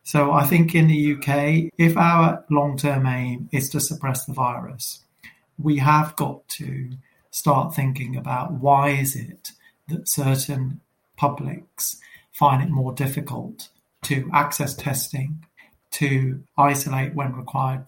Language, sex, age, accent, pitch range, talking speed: English, male, 40-59, British, 135-150 Hz, 135 wpm